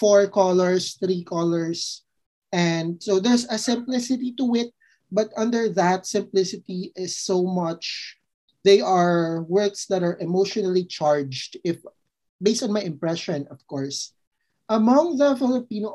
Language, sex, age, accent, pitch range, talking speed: Filipino, male, 20-39, native, 170-220 Hz, 130 wpm